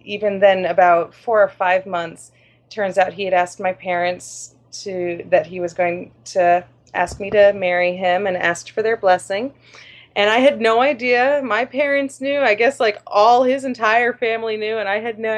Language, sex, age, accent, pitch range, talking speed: English, female, 30-49, American, 185-245 Hz, 195 wpm